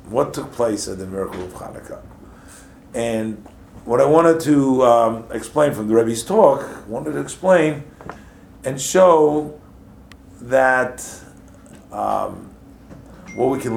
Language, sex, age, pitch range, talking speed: English, male, 50-69, 95-115 Hz, 125 wpm